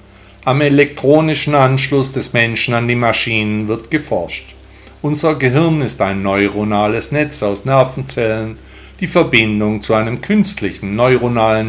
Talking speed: 125 wpm